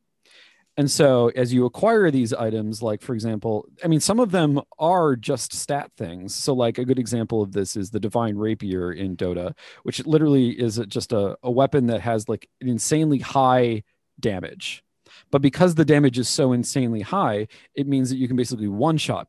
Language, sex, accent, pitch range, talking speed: English, male, American, 110-145 Hz, 190 wpm